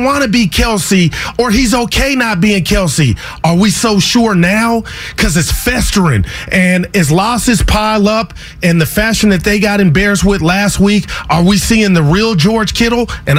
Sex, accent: male, American